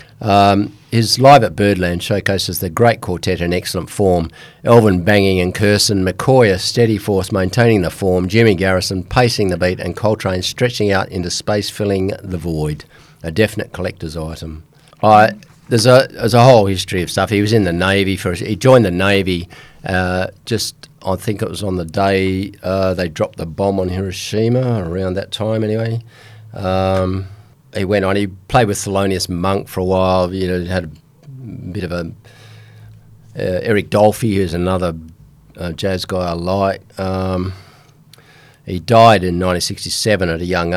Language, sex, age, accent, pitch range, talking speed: English, male, 50-69, Australian, 90-110 Hz, 175 wpm